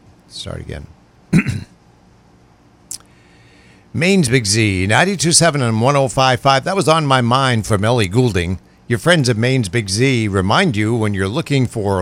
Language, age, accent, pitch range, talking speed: English, 60-79, American, 100-135 Hz, 140 wpm